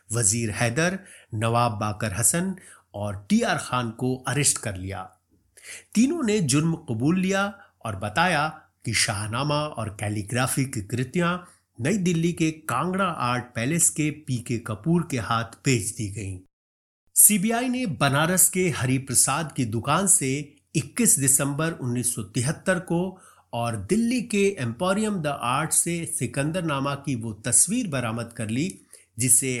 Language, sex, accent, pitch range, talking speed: Hindi, male, native, 115-170 Hz, 130 wpm